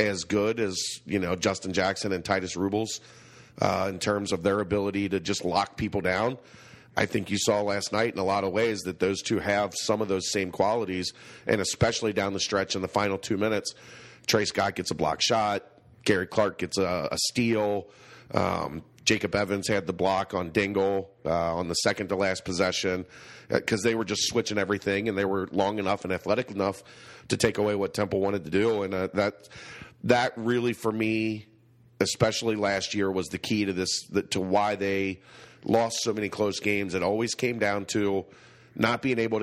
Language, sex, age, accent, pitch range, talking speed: English, male, 40-59, American, 95-110 Hz, 195 wpm